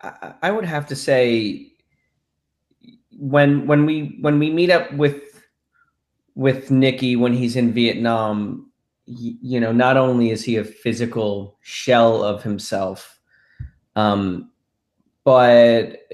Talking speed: 125 wpm